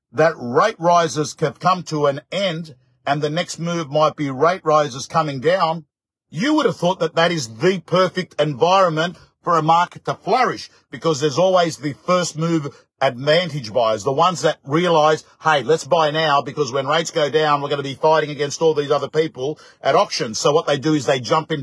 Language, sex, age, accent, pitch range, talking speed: English, male, 50-69, Australian, 130-165 Hz, 205 wpm